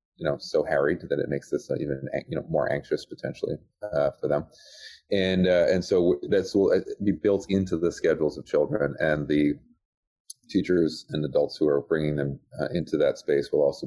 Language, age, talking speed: English, 30-49, 195 wpm